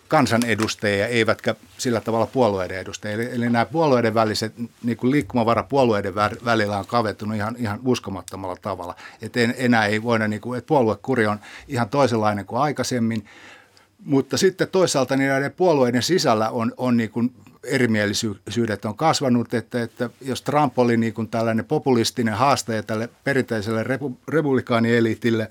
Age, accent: 60-79, native